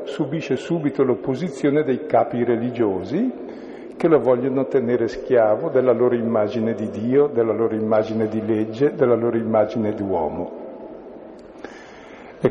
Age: 50-69